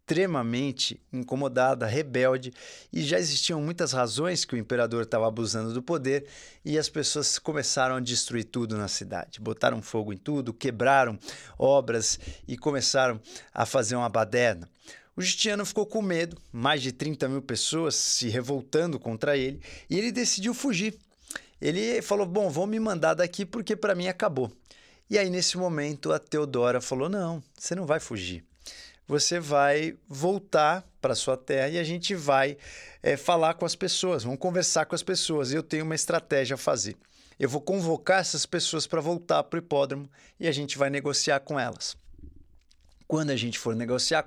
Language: Portuguese